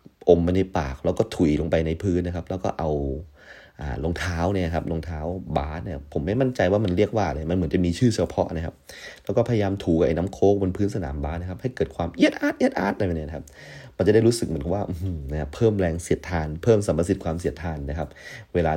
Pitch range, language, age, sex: 80-100 Hz, Thai, 30-49, male